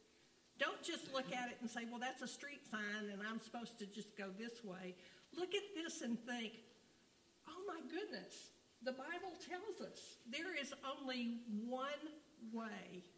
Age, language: 50-69, English